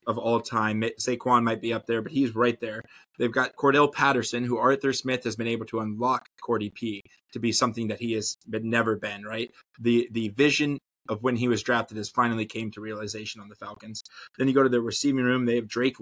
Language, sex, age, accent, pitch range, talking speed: English, male, 20-39, American, 110-125 Hz, 230 wpm